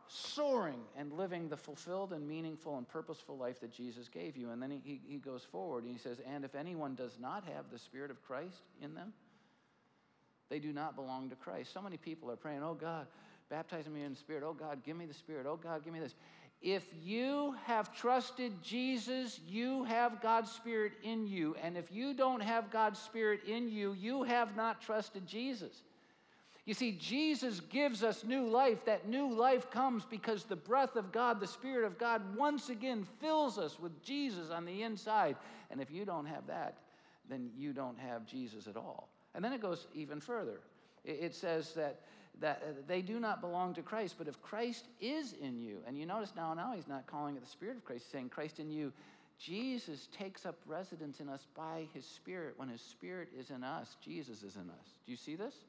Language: English